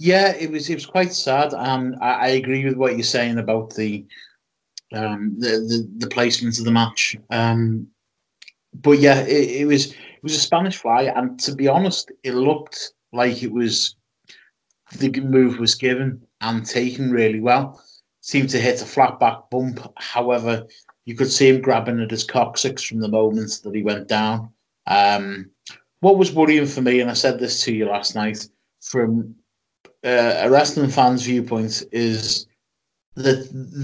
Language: English